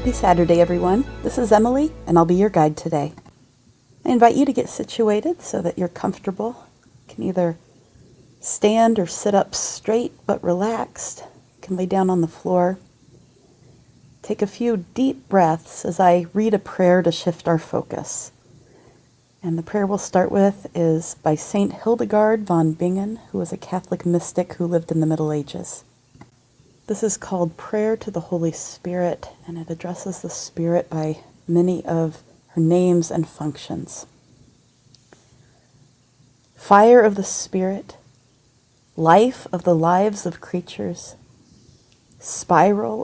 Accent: American